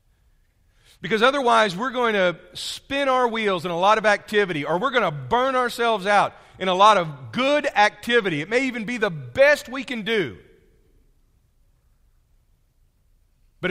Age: 40-59